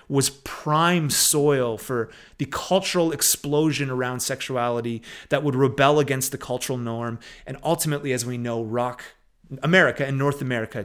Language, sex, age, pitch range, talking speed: English, male, 30-49, 125-160 Hz, 145 wpm